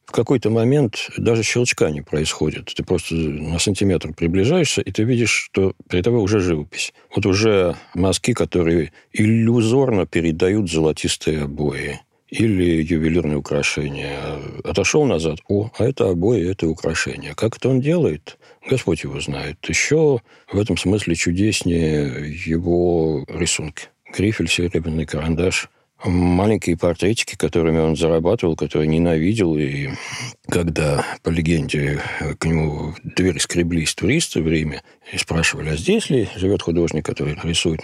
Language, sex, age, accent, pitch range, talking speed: Russian, male, 50-69, native, 80-100 Hz, 135 wpm